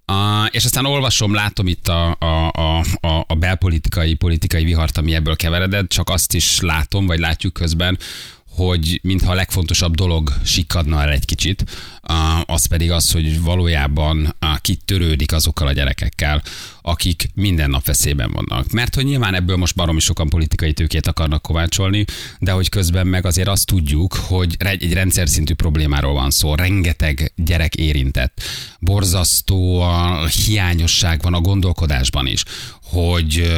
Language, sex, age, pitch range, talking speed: Hungarian, male, 30-49, 80-95 Hz, 140 wpm